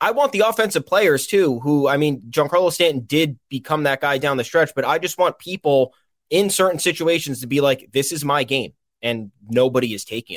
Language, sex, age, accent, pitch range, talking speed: English, male, 20-39, American, 125-155 Hz, 215 wpm